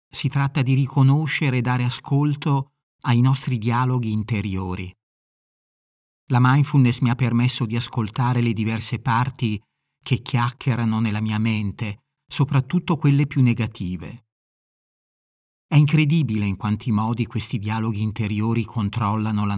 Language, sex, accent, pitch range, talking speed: Italian, male, native, 110-140 Hz, 125 wpm